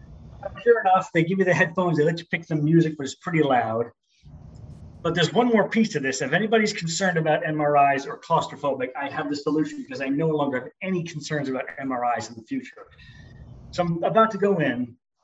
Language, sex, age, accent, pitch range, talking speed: English, male, 40-59, American, 140-195 Hz, 210 wpm